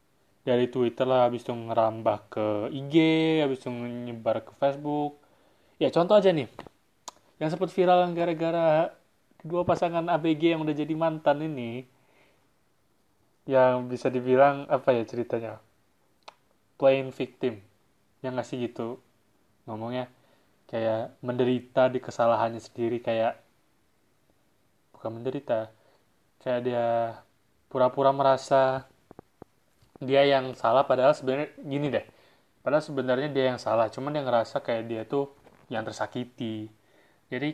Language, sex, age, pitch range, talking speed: Malay, male, 20-39, 115-140 Hz, 120 wpm